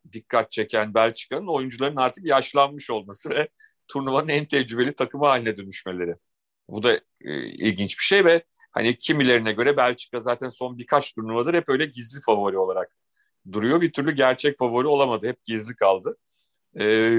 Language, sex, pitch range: Turkish, male, 110-140 Hz